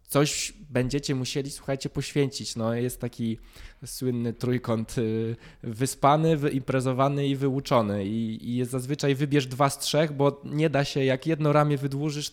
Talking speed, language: 140 wpm, Polish